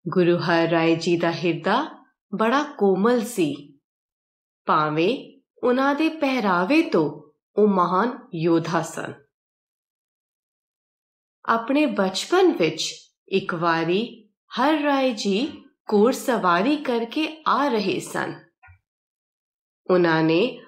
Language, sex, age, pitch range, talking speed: Punjabi, female, 30-49, 175-280 Hz, 95 wpm